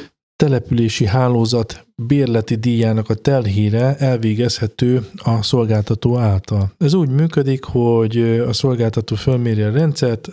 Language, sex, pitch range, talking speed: Hungarian, male, 110-130 Hz, 110 wpm